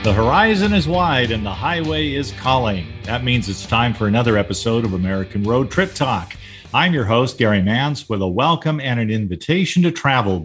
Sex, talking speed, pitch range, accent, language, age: male, 195 wpm, 100-140 Hz, American, English, 50-69